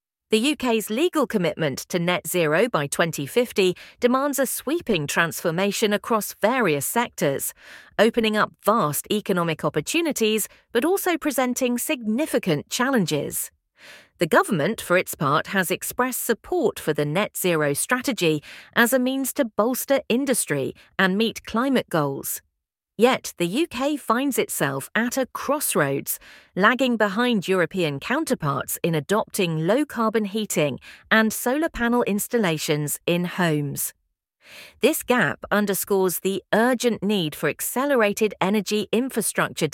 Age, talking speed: 40-59, 125 wpm